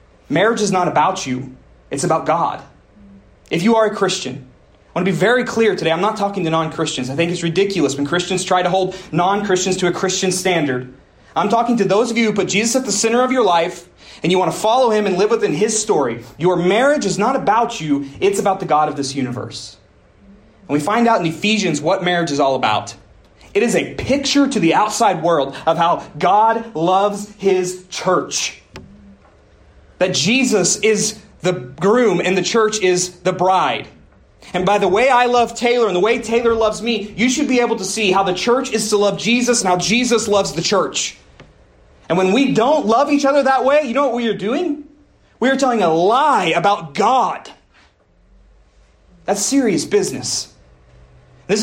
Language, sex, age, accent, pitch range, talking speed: English, male, 30-49, American, 140-215 Hz, 200 wpm